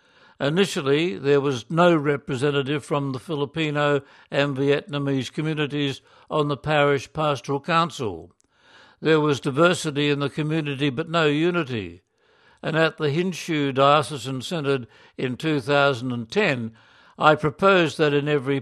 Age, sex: 60-79, male